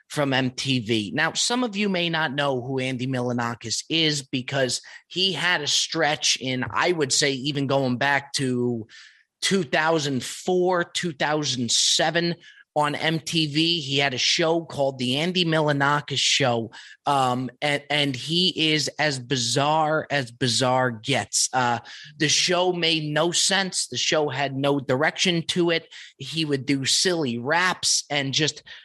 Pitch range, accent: 130-160 Hz, American